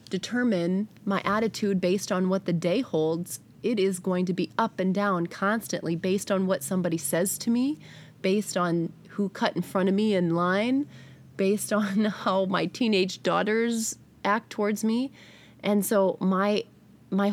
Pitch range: 175-200 Hz